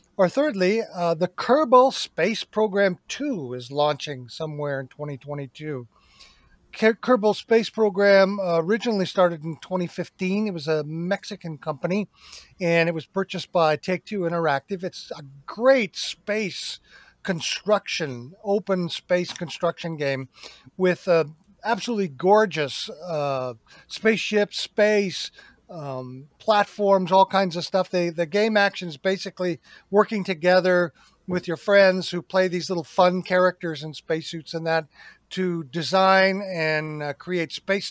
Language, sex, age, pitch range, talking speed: English, male, 50-69, 160-200 Hz, 130 wpm